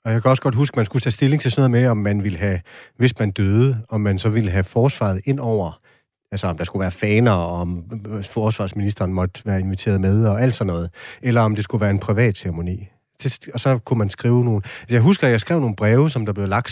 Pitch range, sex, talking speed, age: 100-125 Hz, male, 250 wpm, 30-49